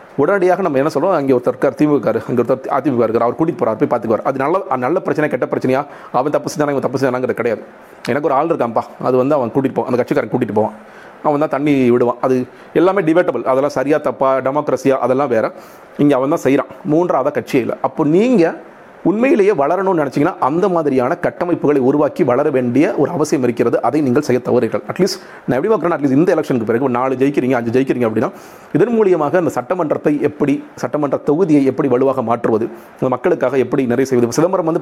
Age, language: 40-59, Tamil